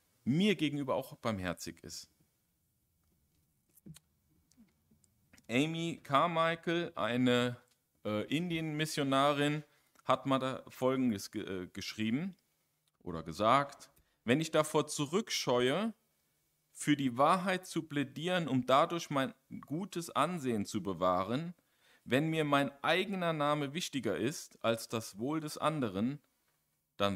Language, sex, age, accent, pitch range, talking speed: German, male, 40-59, German, 110-150 Hz, 105 wpm